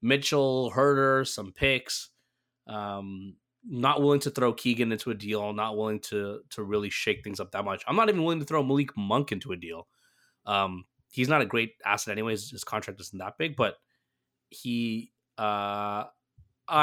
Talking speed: 175 wpm